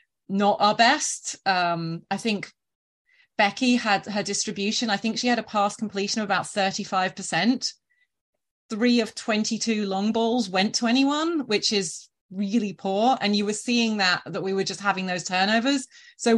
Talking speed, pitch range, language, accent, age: 175 wpm, 185-235 Hz, English, British, 30-49